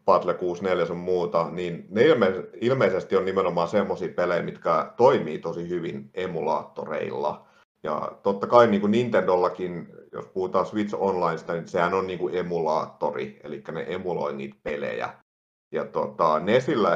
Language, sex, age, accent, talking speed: Finnish, male, 50-69, native, 140 wpm